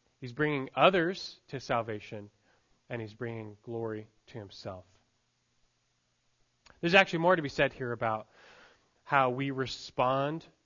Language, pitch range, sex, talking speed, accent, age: English, 115-150 Hz, male, 125 wpm, American, 20-39